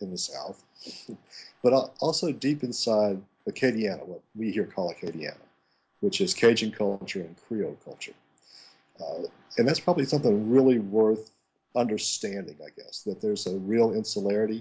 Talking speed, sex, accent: 145 wpm, male, American